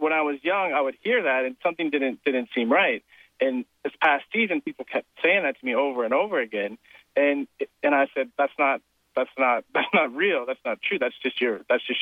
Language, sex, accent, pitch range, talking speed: English, male, American, 125-160 Hz, 235 wpm